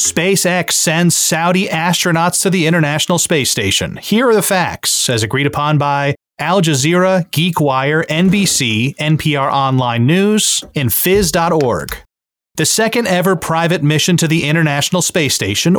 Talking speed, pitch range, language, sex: 135 wpm, 135-175 Hz, English, male